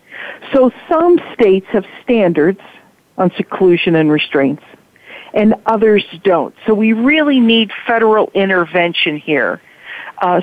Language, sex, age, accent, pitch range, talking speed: English, female, 50-69, American, 185-235 Hz, 115 wpm